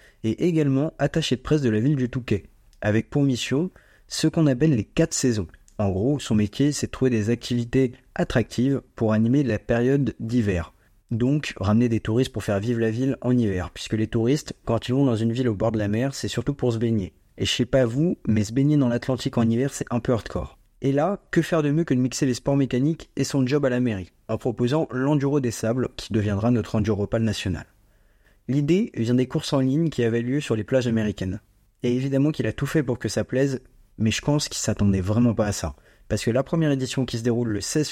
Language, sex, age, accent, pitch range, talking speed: French, male, 30-49, French, 110-140 Hz, 240 wpm